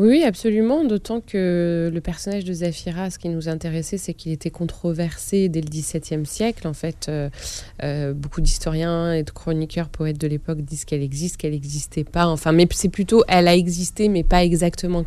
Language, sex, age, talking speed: French, female, 20-39, 185 wpm